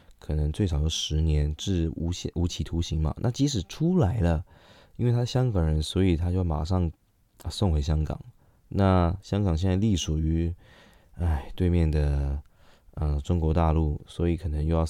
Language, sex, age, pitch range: Chinese, male, 20-39, 80-100 Hz